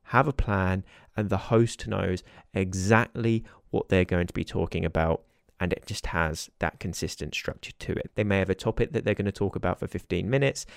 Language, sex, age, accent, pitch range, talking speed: English, male, 20-39, British, 95-115 Hz, 210 wpm